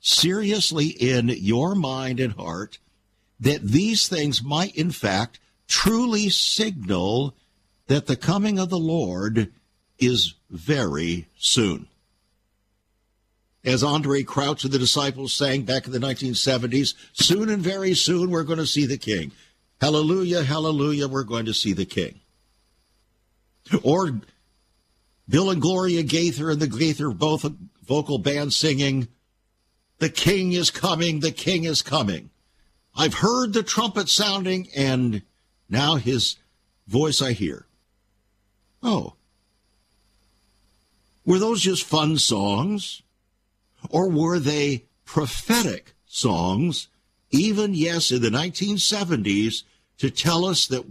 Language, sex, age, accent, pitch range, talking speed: English, male, 60-79, American, 105-165 Hz, 120 wpm